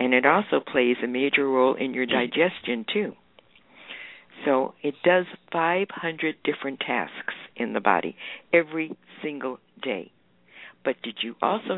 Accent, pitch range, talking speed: American, 135-165 Hz, 140 wpm